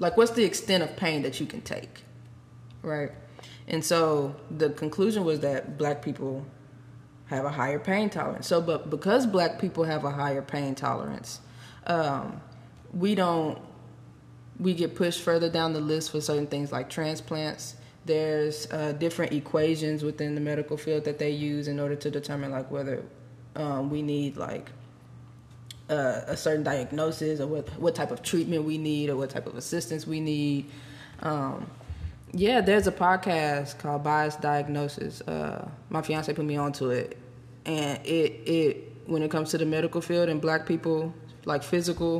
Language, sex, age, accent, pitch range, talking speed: English, female, 20-39, American, 140-160 Hz, 170 wpm